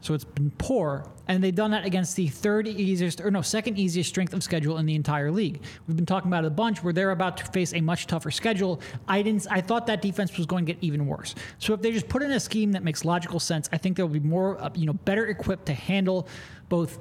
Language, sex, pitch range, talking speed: English, male, 155-200 Hz, 265 wpm